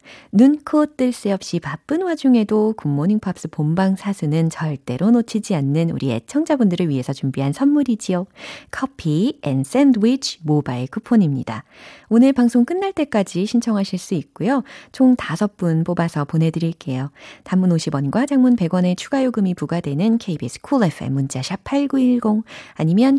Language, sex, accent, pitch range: Korean, female, native, 150-245 Hz